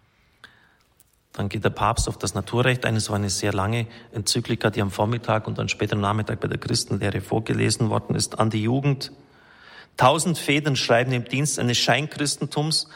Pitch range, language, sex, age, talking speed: 110-135 Hz, German, male, 40-59, 170 wpm